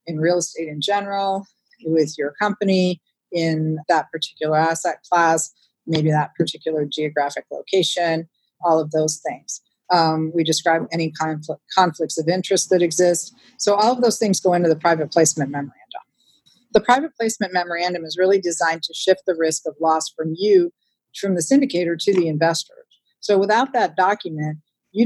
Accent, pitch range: American, 160-190 Hz